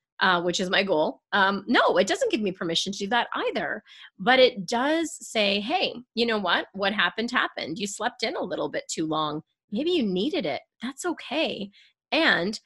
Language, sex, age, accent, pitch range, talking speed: English, female, 30-49, American, 170-235 Hz, 200 wpm